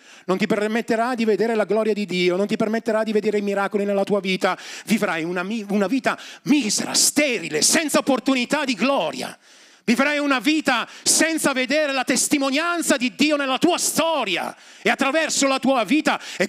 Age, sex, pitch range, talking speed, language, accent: 40-59, male, 205-285 Hz, 170 wpm, Italian, native